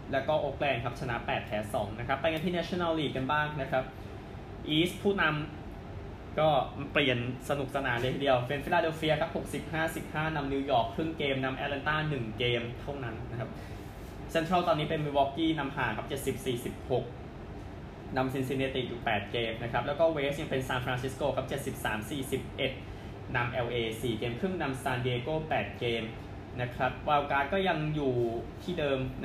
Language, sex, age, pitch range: Thai, male, 20-39, 115-145 Hz